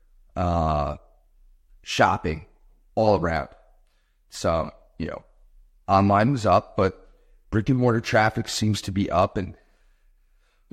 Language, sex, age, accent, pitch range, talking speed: English, male, 30-49, American, 85-110 Hz, 115 wpm